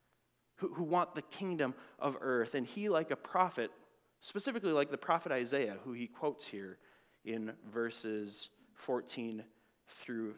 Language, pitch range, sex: English, 140-215 Hz, male